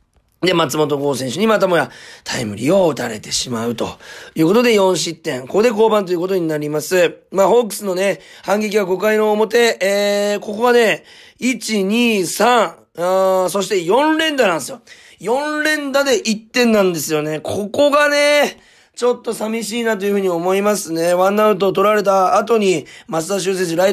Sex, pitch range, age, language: male, 170-230 Hz, 40-59, Japanese